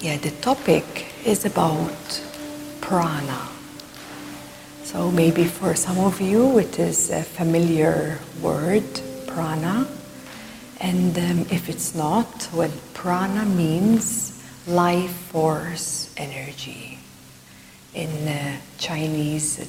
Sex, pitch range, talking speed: female, 150-180 Hz, 100 wpm